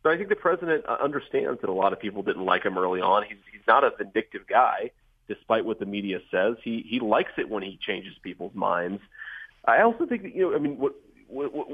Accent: American